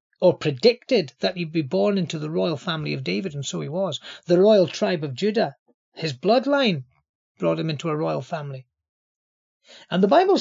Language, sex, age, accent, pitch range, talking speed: English, male, 40-59, British, 180-230 Hz, 185 wpm